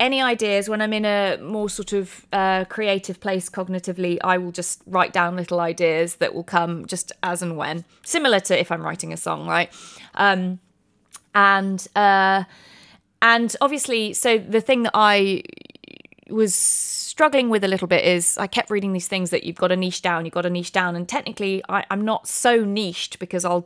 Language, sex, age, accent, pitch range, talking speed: English, female, 20-39, British, 180-210 Hz, 195 wpm